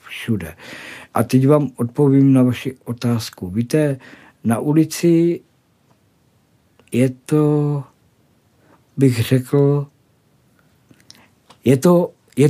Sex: male